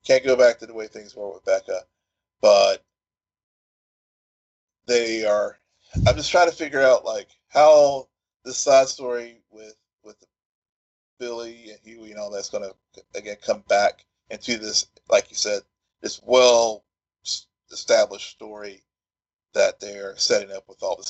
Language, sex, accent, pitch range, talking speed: English, male, American, 100-150 Hz, 150 wpm